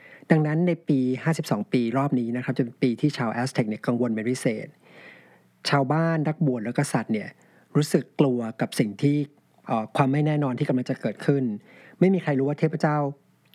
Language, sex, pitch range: Thai, male, 125-155 Hz